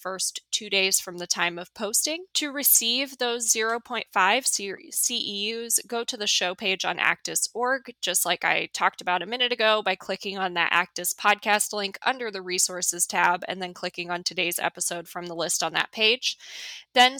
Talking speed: 180 wpm